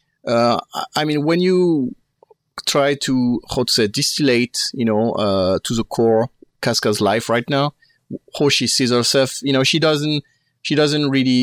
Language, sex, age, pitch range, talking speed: English, male, 30-49, 115-145 Hz, 165 wpm